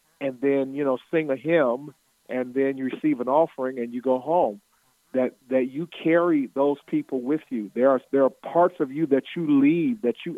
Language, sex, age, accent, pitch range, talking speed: English, male, 50-69, American, 125-155 Hz, 215 wpm